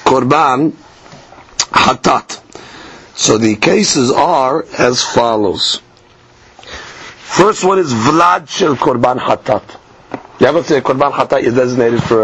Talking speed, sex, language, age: 120 wpm, male, English, 50-69